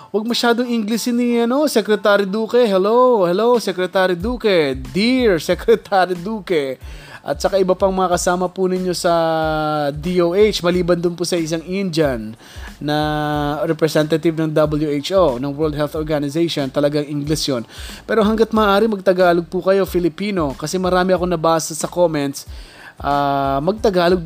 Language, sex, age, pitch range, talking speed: Filipino, male, 20-39, 145-195 Hz, 140 wpm